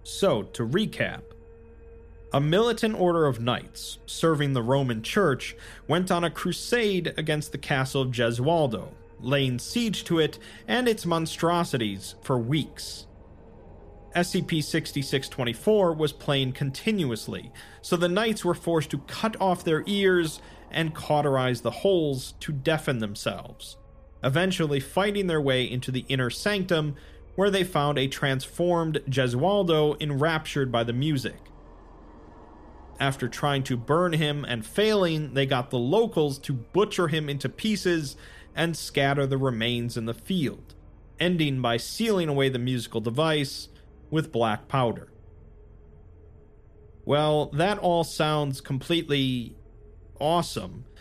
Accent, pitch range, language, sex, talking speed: American, 115-165 Hz, English, male, 125 wpm